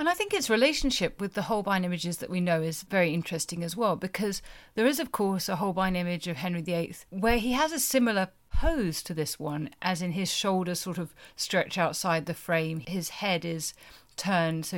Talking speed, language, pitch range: 210 wpm, English, 165-215 Hz